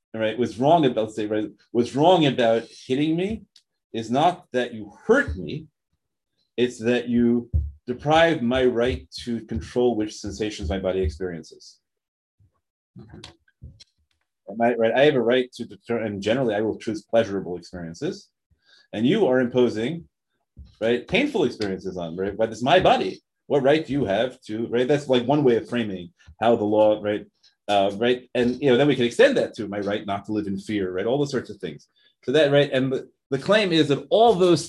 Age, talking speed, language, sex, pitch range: 30-49, 185 wpm, English, male, 105-135 Hz